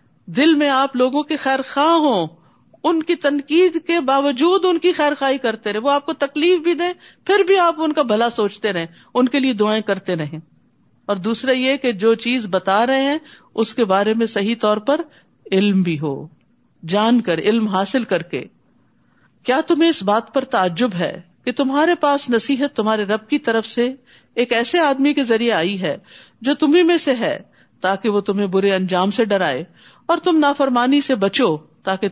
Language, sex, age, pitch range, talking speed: Urdu, female, 50-69, 190-285 Hz, 195 wpm